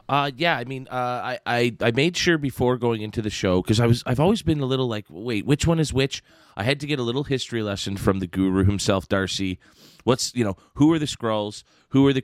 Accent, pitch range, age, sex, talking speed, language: American, 105-135 Hz, 30-49, male, 255 wpm, English